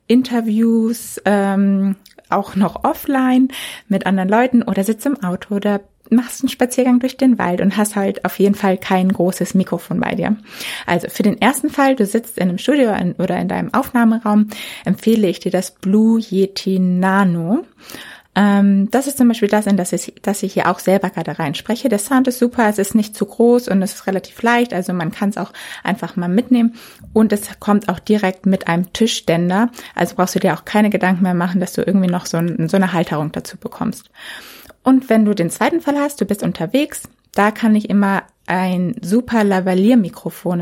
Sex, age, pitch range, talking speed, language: female, 20-39, 185-225 Hz, 195 wpm, German